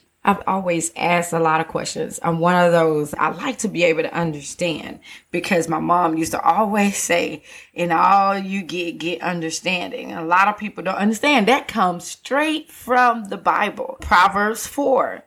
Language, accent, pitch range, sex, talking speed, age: English, American, 165-215 Hz, female, 175 wpm, 20-39